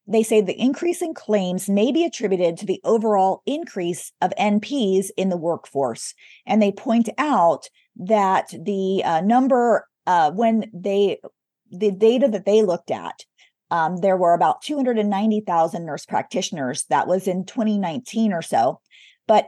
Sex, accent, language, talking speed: female, American, English, 150 wpm